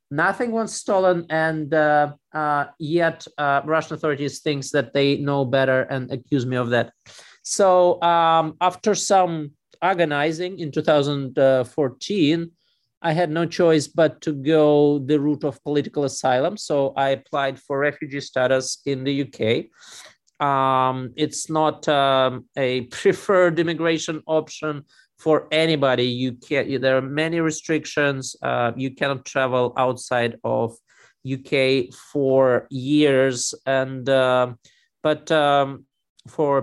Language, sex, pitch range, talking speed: English, male, 130-155 Hz, 130 wpm